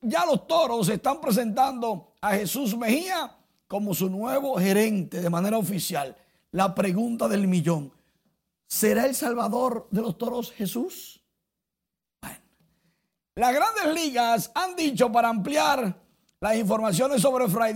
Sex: male